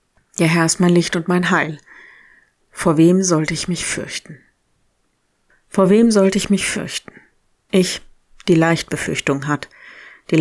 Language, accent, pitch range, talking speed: German, German, 160-185 Hz, 155 wpm